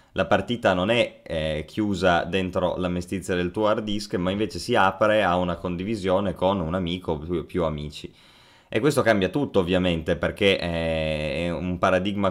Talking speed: 175 wpm